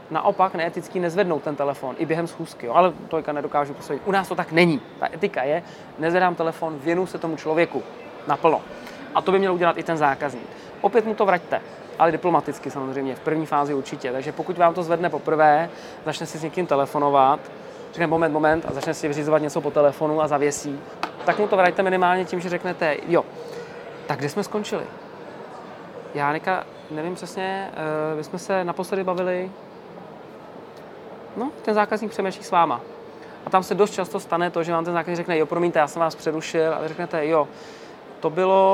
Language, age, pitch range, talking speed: Czech, 20-39, 155-185 Hz, 185 wpm